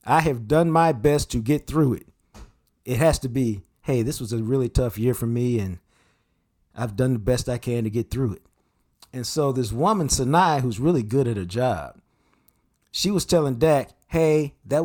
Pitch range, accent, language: 115-145 Hz, American, English